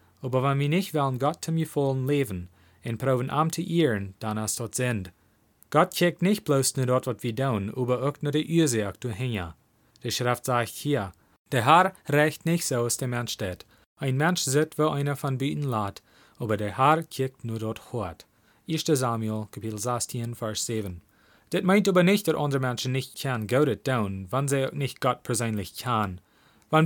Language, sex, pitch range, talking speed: German, male, 110-150 Hz, 205 wpm